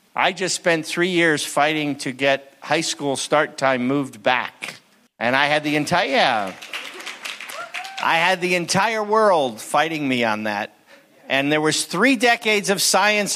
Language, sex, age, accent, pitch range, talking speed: English, male, 50-69, American, 140-180 Hz, 160 wpm